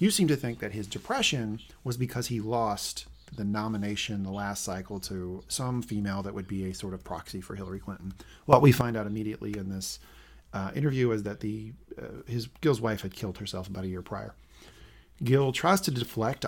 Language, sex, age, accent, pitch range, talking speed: English, male, 40-59, American, 100-135 Hz, 205 wpm